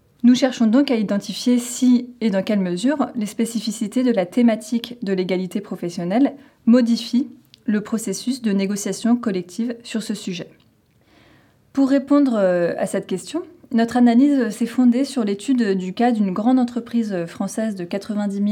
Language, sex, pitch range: French, female, 195-245 Hz